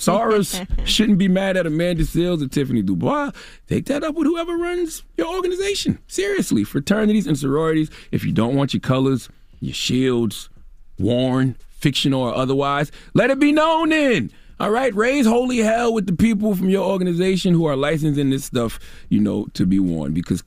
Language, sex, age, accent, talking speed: English, male, 30-49, American, 180 wpm